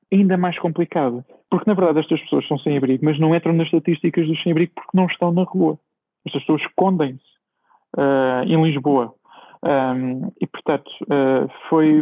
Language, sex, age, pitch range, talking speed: Portuguese, male, 20-39, 140-160 Hz, 175 wpm